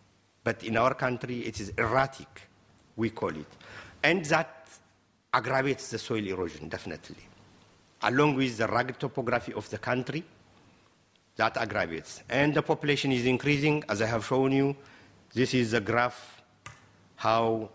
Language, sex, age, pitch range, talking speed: Spanish, male, 50-69, 100-130 Hz, 140 wpm